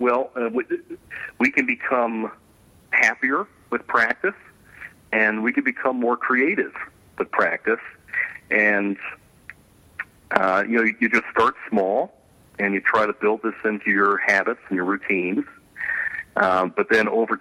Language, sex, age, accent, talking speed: English, male, 40-59, American, 140 wpm